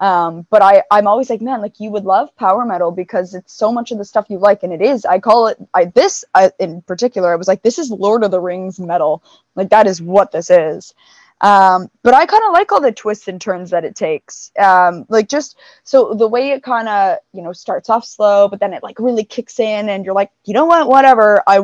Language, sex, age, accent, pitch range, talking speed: English, female, 20-39, American, 190-235 Hz, 250 wpm